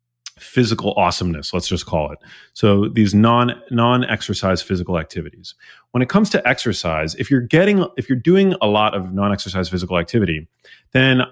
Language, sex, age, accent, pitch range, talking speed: English, male, 30-49, American, 90-120 Hz, 165 wpm